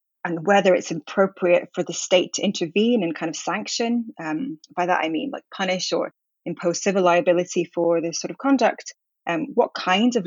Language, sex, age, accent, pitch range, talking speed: English, female, 20-39, British, 170-210 Hz, 195 wpm